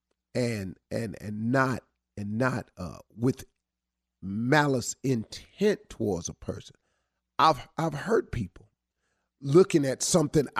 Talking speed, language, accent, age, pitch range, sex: 115 wpm, English, American, 40-59, 115-160 Hz, male